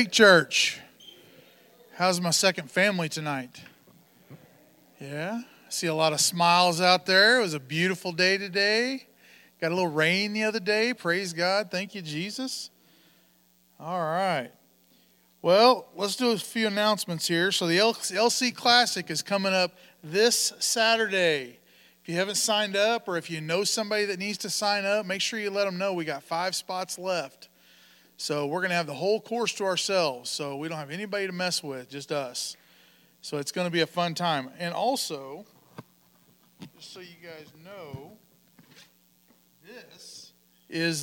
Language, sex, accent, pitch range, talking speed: English, male, American, 155-205 Hz, 165 wpm